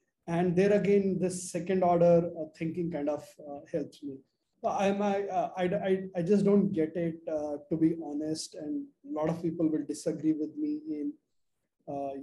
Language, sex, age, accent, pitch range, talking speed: English, male, 30-49, Indian, 150-185 Hz, 180 wpm